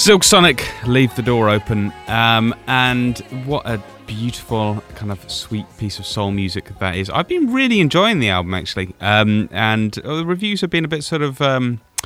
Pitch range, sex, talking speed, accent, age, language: 95-135 Hz, male, 190 wpm, British, 30-49, English